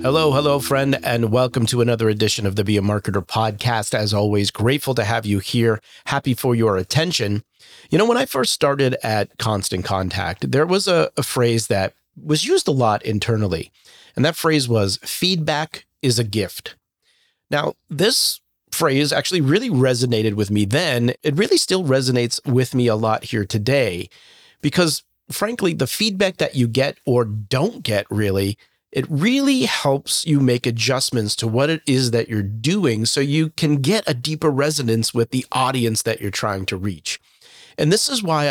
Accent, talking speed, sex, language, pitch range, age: American, 180 wpm, male, English, 110-145 Hz, 40-59